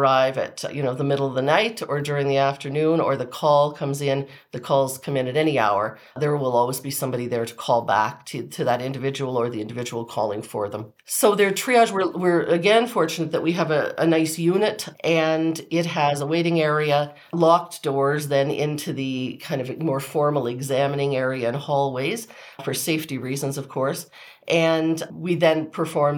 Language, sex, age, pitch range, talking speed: English, female, 40-59, 135-160 Hz, 195 wpm